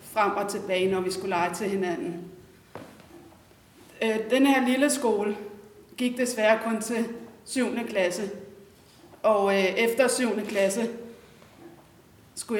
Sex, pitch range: female, 190-225 Hz